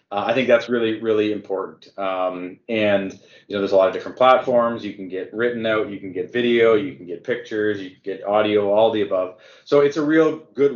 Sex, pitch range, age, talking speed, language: male, 100-125 Hz, 30-49, 235 wpm, English